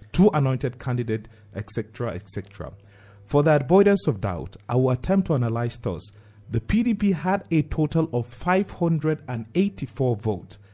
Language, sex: English, male